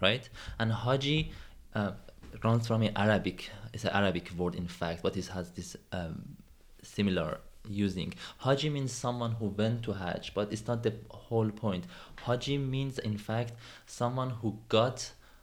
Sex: male